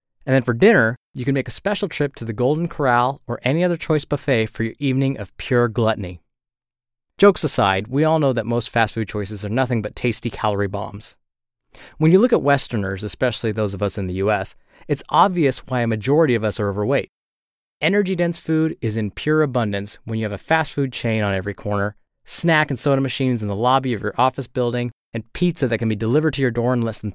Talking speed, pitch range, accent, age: 225 wpm, 105-145 Hz, American, 30-49